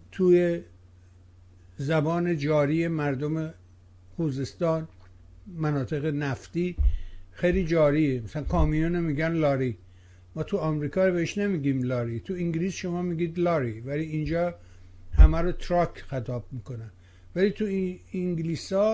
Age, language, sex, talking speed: 60-79, Persian, male, 115 wpm